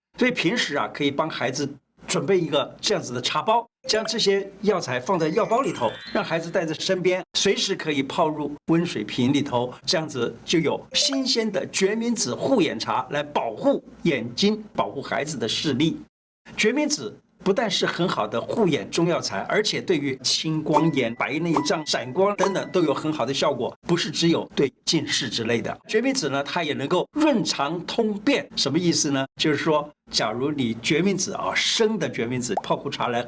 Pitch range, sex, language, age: 140-195 Hz, male, Chinese, 50-69